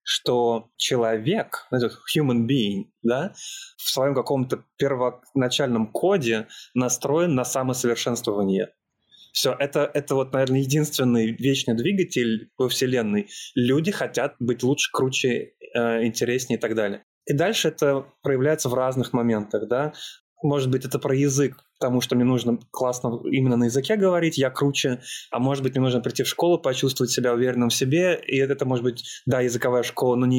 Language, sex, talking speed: Russian, male, 155 wpm